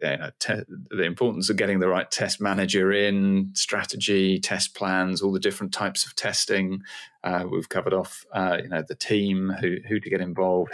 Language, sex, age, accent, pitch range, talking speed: English, male, 40-59, British, 90-105 Hz, 180 wpm